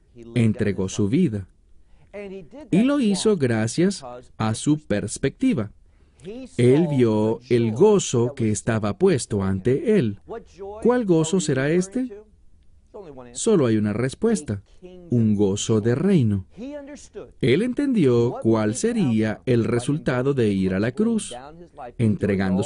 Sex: male